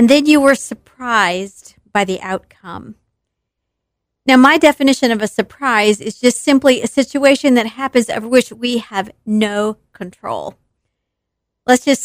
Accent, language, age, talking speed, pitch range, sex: American, English, 40-59, 145 wpm, 215-275 Hz, female